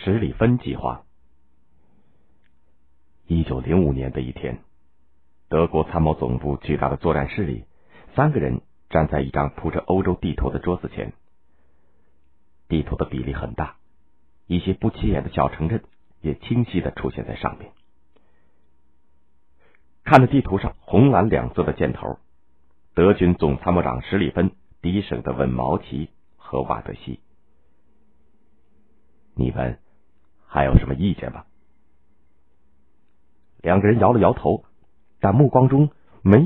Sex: male